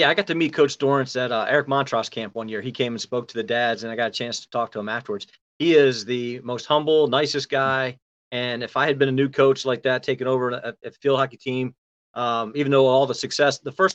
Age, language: 40-59, English